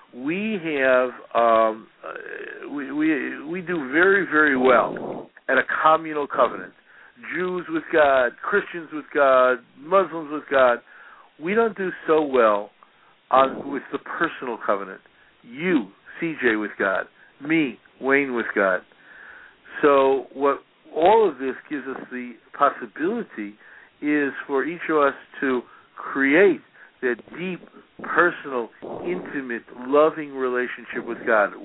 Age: 60-79